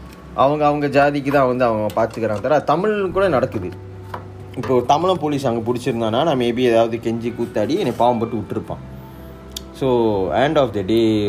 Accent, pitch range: native, 95-125 Hz